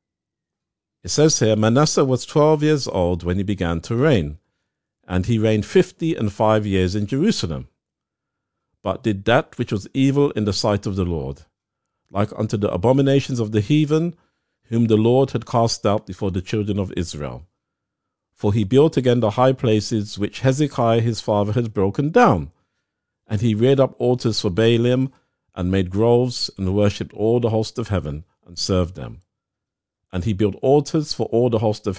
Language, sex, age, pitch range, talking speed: English, male, 50-69, 95-125 Hz, 180 wpm